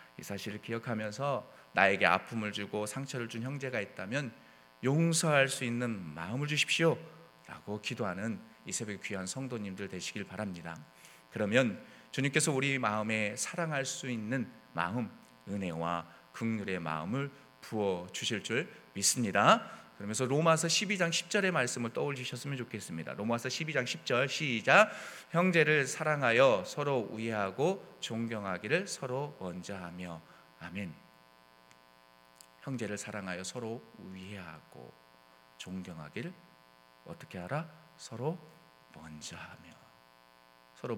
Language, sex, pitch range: Korean, male, 85-130 Hz